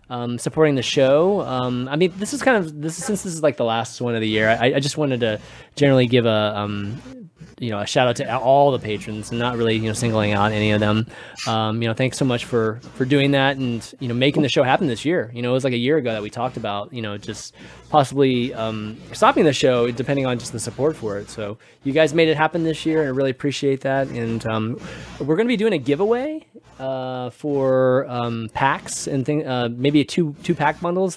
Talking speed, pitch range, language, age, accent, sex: 250 wpm, 115-150 Hz, English, 20-39, American, male